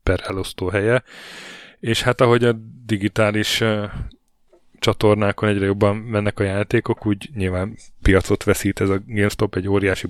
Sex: male